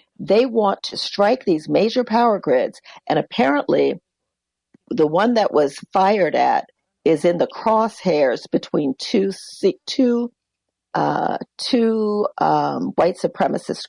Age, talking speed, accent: 50-69, 110 wpm, American